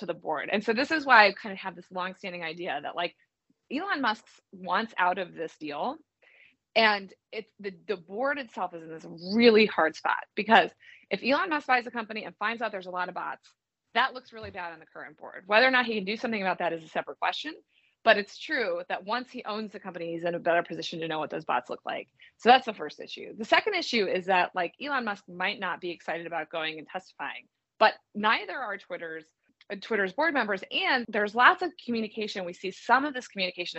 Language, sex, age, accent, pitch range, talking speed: English, female, 30-49, American, 180-245 Hz, 235 wpm